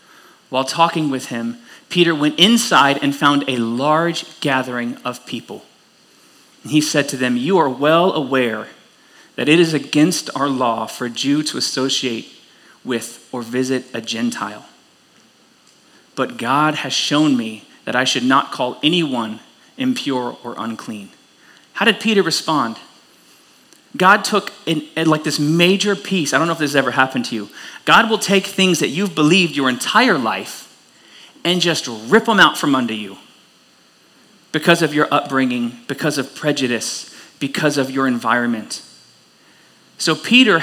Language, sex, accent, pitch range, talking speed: English, male, American, 125-175 Hz, 155 wpm